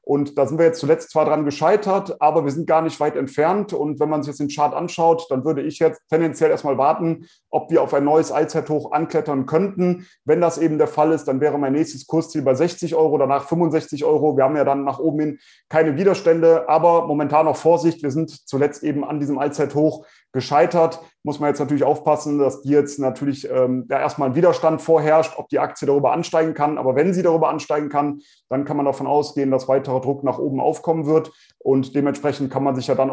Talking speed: 220 wpm